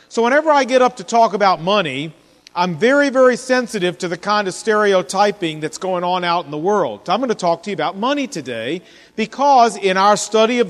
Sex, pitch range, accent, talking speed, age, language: male, 175-240 Hz, American, 220 wpm, 40-59, English